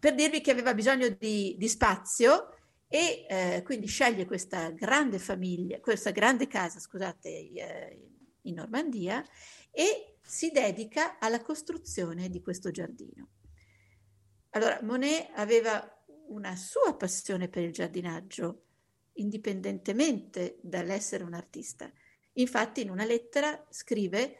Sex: female